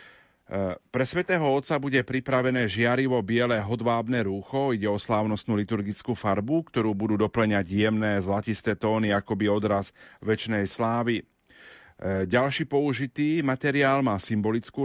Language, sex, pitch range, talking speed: Slovak, male, 100-120 Hz, 115 wpm